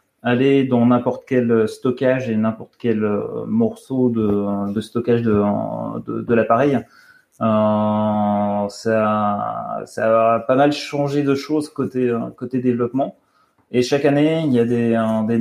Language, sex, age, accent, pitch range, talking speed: French, male, 30-49, French, 110-135 Hz, 140 wpm